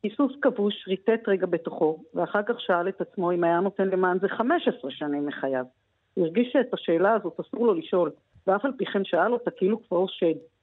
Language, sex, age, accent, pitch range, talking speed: Hebrew, female, 50-69, native, 165-205 Hz, 205 wpm